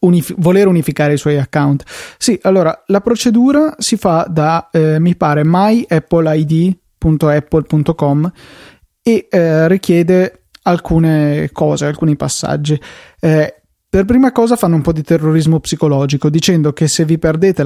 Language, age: Italian, 20-39